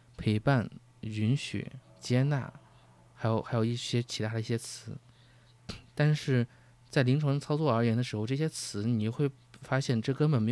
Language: Chinese